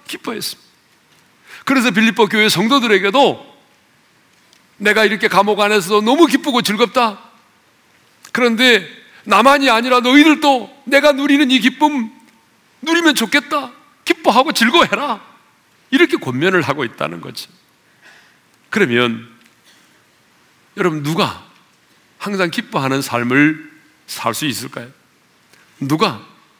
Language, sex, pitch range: Korean, male, 150-250 Hz